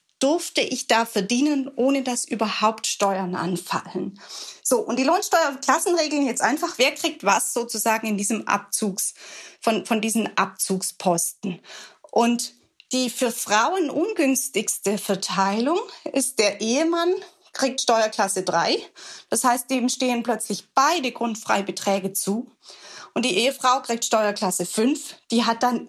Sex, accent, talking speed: female, German, 125 wpm